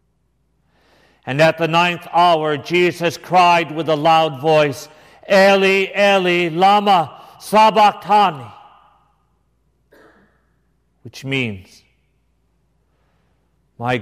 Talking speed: 75 wpm